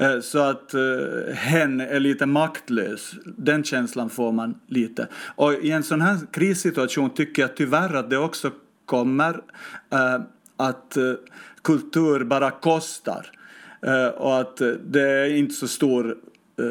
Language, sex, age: Swedish, male, 50-69